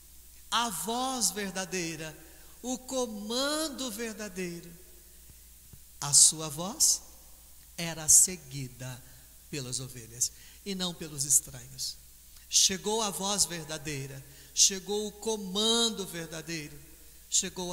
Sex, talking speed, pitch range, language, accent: male, 90 wpm, 130-200 Hz, Portuguese, Brazilian